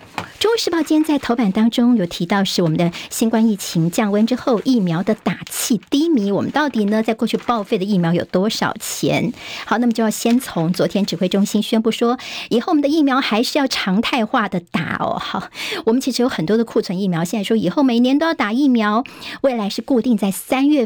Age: 50-69